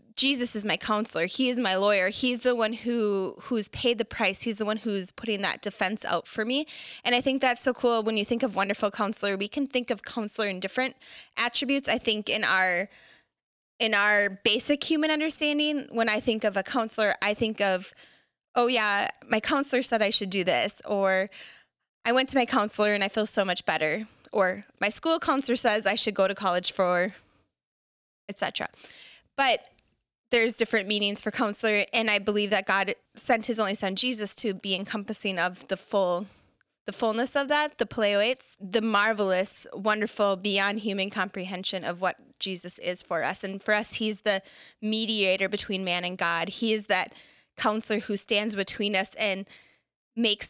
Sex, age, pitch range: female, 20-39, 195-240 Hz